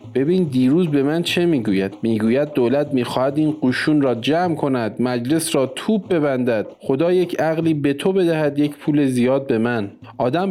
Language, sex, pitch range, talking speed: Persian, male, 130-175 Hz, 170 wpm